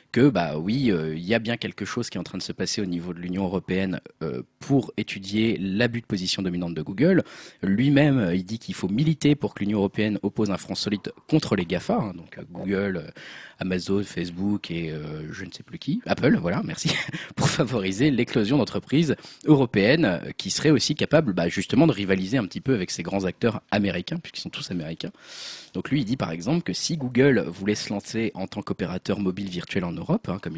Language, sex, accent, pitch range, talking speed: French, male, French, 95-130 Hz, 220 wpm